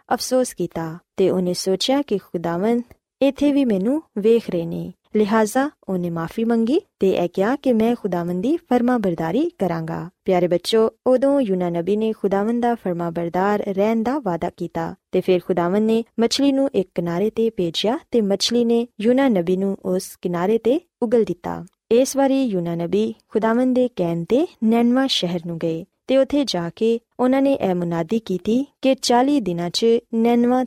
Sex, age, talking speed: female, 20-39, 110 wpm